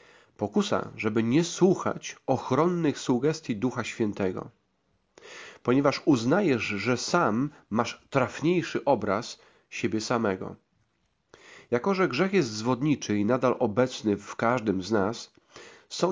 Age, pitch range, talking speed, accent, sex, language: 40-59, 115-165 Hz, 110 wpm, native, male, Polish